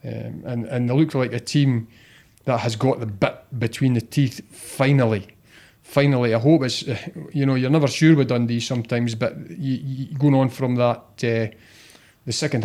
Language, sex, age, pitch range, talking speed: English, male, 30-49, 115-145 Hz, 185 wpm